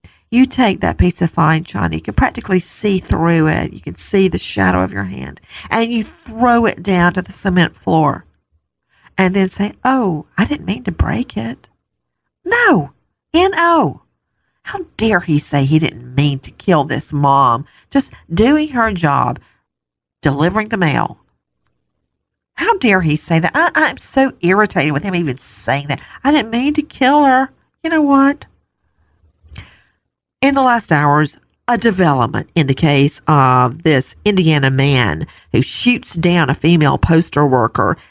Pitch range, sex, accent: 140-200 Hz, female, American